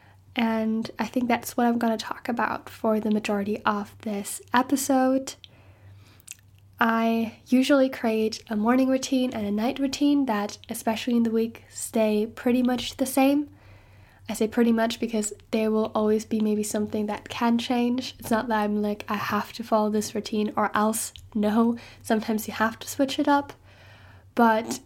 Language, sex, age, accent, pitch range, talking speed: English, female, 10-29, American, 210-245 Hz, 175 wpm